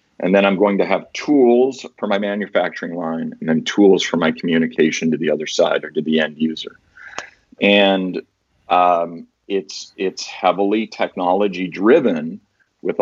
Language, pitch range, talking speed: English, 95-110 Hz, 155 wpm